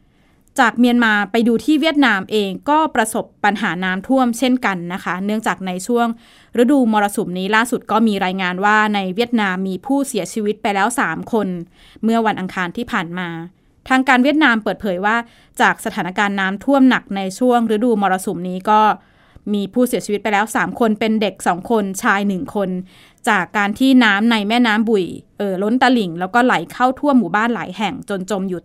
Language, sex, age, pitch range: Thai, female, 20-39, 195-235 Hz